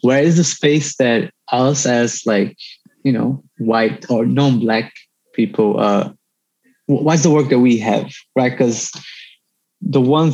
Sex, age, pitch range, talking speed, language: male, 20-39, 105-140 Hz, 145 wpm, English